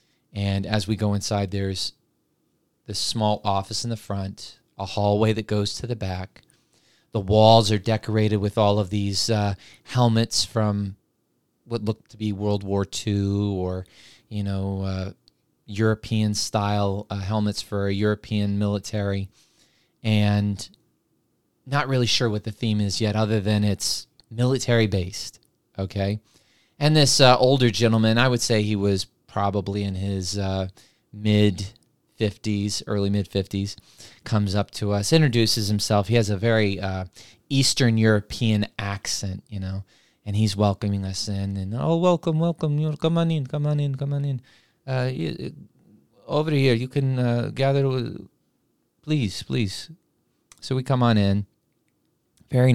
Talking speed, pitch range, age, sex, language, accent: 150 wpm, 100-120 Hz, 20-39, male, English, American